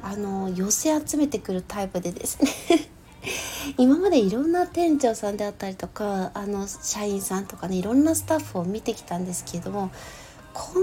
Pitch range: 200-285 Hz